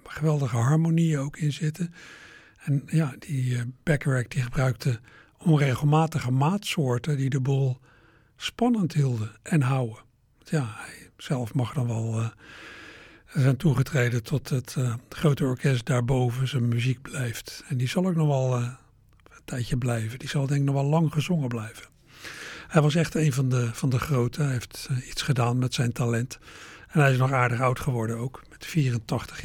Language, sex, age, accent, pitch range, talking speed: Dutch, male, 60-79, Dutch, 120-145 Hz, 170 wpm